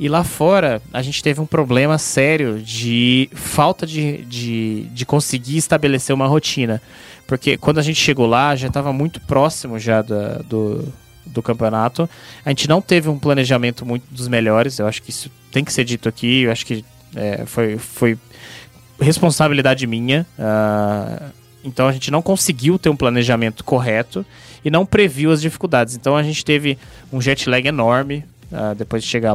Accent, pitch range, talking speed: Brazilian, 120-155 Hz, 175 wpm